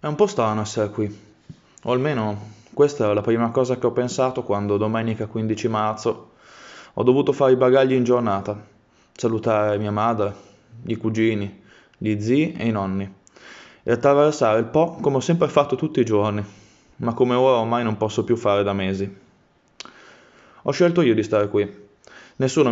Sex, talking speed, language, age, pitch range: male, 170 wpm, Italian, 20-39, 105-125 Hz